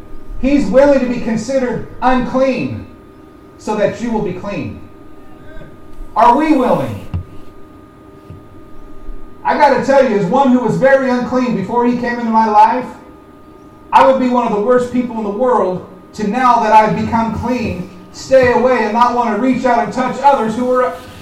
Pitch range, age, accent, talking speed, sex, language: 210-275 Hz, 40-59, American, 175 wpm, male, English